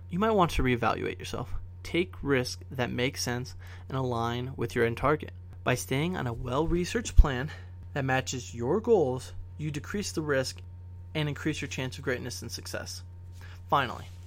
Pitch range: 90-145 Hz